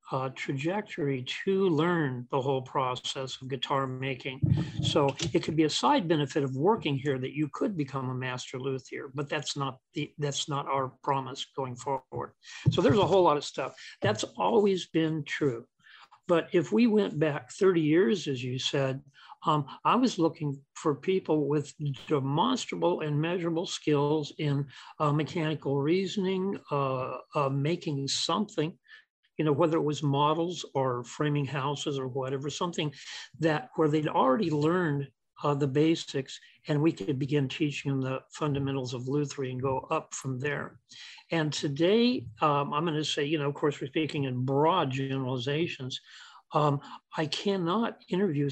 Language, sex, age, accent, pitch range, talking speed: English, male, 50-69, American, 135-160 Hz, 165 wpm